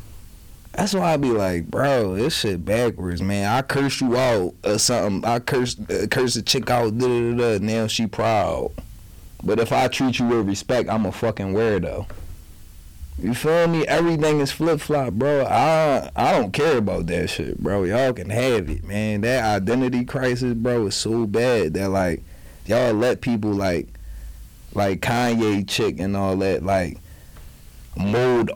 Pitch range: 90-120 Hz